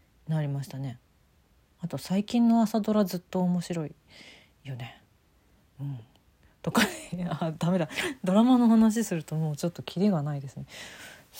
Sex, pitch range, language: female, 145-200 Hz, Japanese